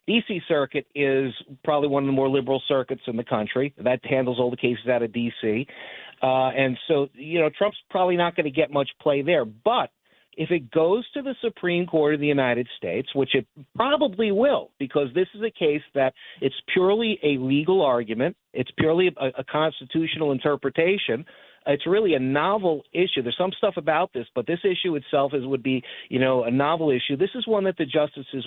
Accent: American